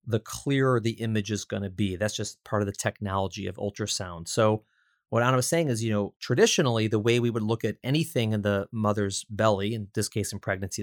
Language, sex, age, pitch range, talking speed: English, male, 30-49, 105-130 Hz, 225 wpm